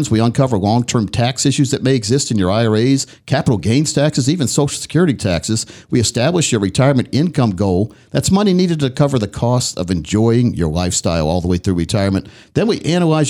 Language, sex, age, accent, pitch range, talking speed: English, male, 50-69, American, 110-150 Hz, 195 wpm